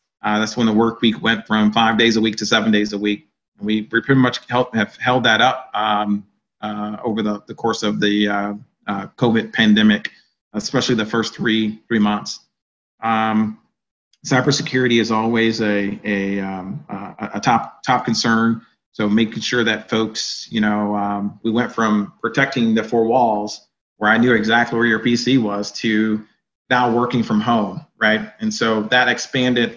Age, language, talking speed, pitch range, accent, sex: 30-49, English, 180 wpm, 105-115 Hz, American, male